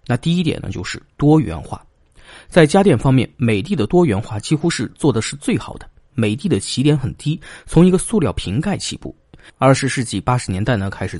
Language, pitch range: Chinese, 105-150 Hz